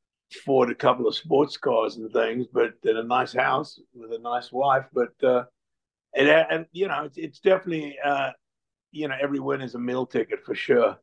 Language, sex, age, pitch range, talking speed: English, male, 50-69, 125-150 Hz, 200 wpm